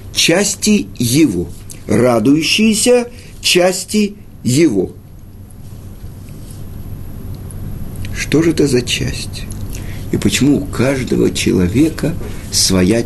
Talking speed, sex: 75 wpm, male